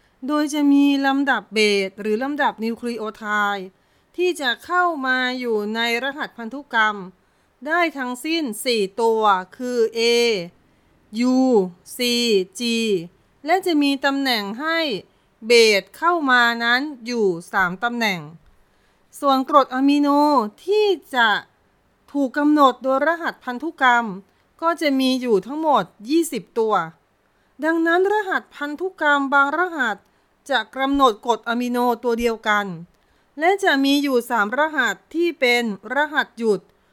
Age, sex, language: 30-49, female, Thai